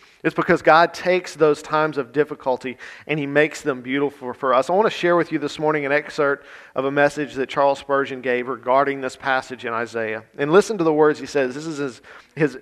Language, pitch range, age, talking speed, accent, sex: English, 130-160 Hz, 40-59, 230 wpm, American, male